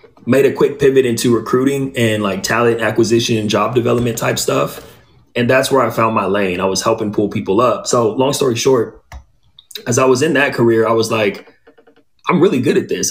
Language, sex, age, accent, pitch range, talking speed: English, male, 30-49, American, 105-120 Hz, 205 wpm